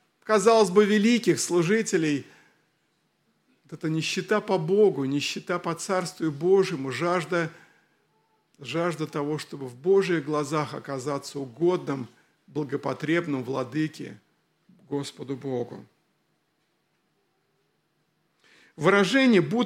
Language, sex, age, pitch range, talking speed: Russian, male, 50-69, 155-200 Hz, 80 wpm